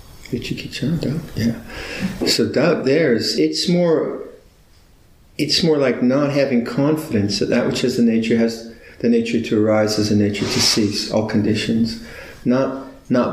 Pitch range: 105-120 Hz